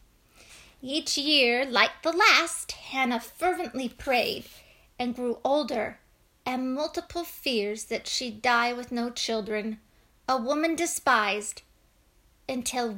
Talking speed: 110 wpm